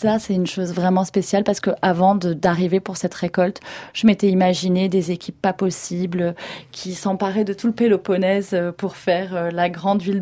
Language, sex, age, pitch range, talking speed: French, female, 30-49, 170-195 Hz, 175 wpm